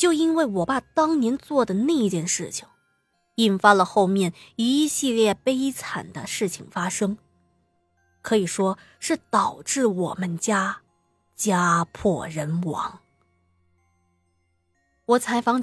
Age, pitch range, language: 20-39, 175-230 Hz, Chinese